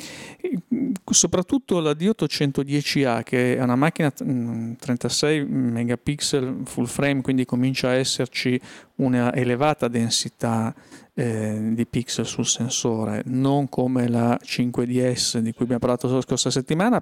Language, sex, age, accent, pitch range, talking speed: Italian, male, 40-59, native, 120-140 Hz, 120 wpm